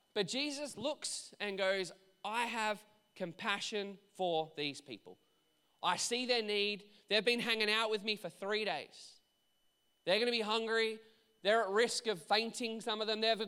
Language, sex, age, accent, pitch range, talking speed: English, male, 20-39, Australian, 175-225 Hz, 170 wpm